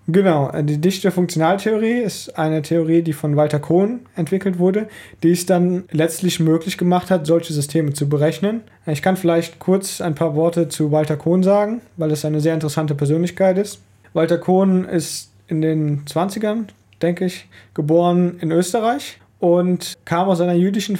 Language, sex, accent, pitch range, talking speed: German, male, German, 155-185 Hz, 165 wpm